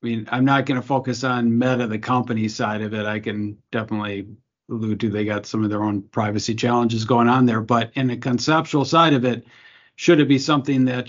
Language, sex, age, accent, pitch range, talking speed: English, male, 50-69, American, 115-135 Hz, 225 wpm